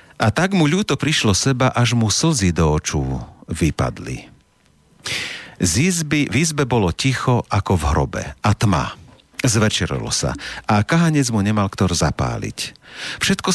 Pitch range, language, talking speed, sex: 85-130 Hz, Slovak, 140 wpm, male